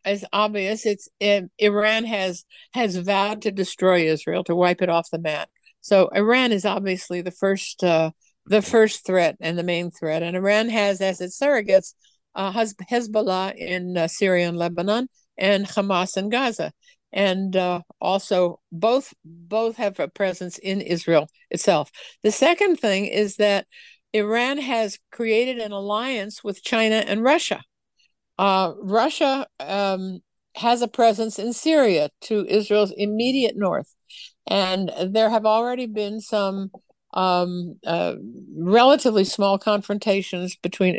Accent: American